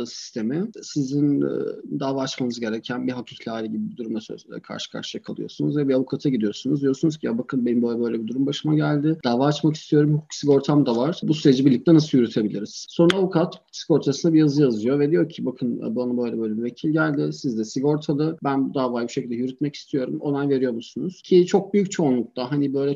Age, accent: 40-59, native